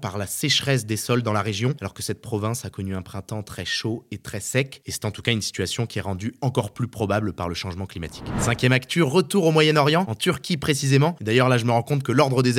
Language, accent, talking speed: French, French, 265 wpm